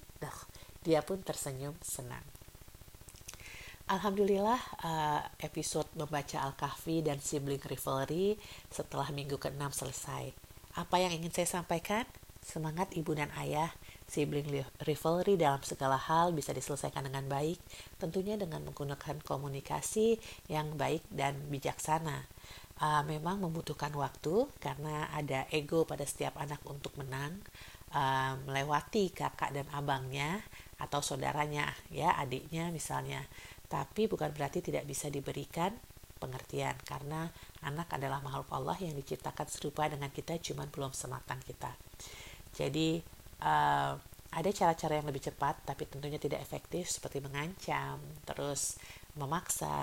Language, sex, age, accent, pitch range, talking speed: Indonesian, female, 50-69, native, 135-160 Hz, 115 wpm